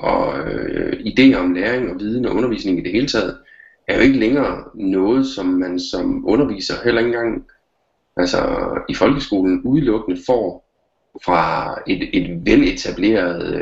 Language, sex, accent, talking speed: Danish, male, native, 150 wpm